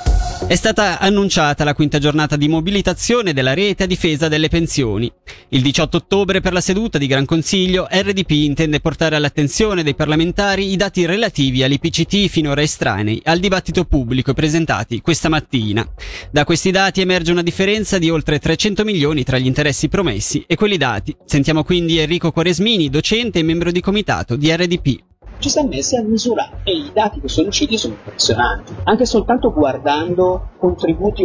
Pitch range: 145-200 Hz